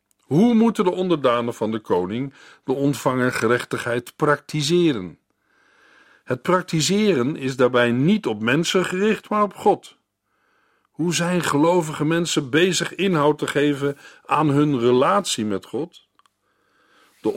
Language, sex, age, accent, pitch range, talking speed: Dutch, male, 50-69, Dutch, 120-165 Hz, 120 wpm